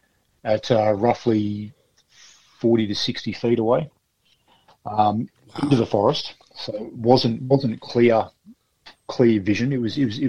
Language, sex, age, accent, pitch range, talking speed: English, male, 40-59, Australian, 105-125 Hz, 140 wpm